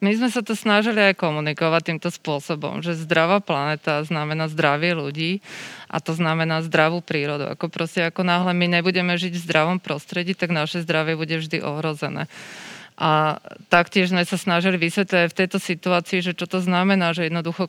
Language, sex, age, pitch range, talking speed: Slovak, female, 30-49, 160-180 Hz, 175 wpm